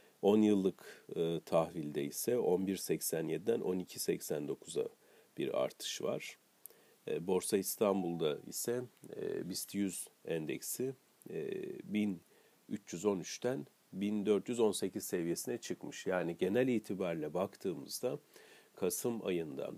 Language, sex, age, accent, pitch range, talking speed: Turkish, male, 40-59, native, 85-110 Hz, 90 wpm